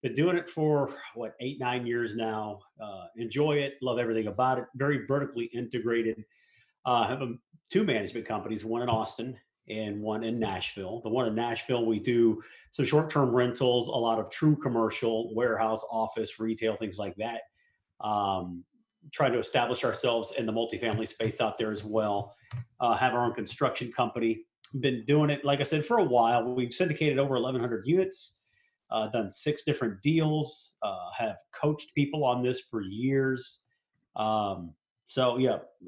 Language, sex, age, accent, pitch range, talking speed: English, male, 40-59, American, 115-145 Hz, 170 wpm